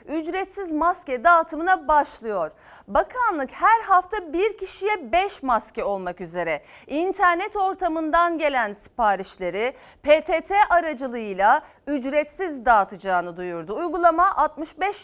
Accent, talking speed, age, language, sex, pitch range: native, 95 wpm, 40-59, Turkish, female, 245-340 Hz